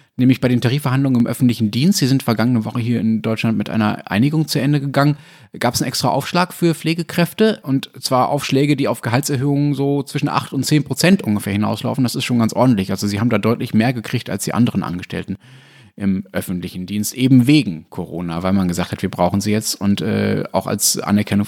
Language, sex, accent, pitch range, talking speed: German, male, German, 105-140 Hz, 210 wpm